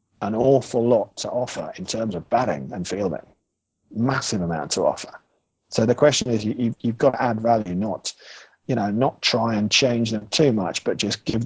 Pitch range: 105-135 Hz